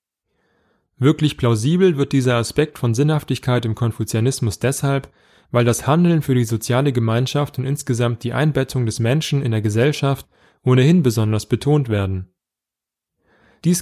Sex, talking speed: male, 135 wpm